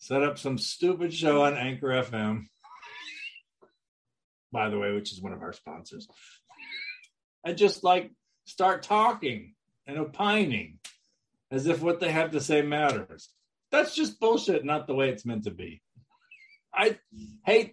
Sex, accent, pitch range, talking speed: male, American, 130-195 Hz, 150 wpm